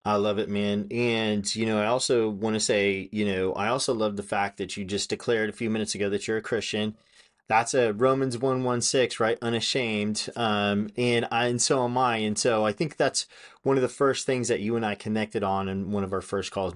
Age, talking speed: 30-49, 245 wpm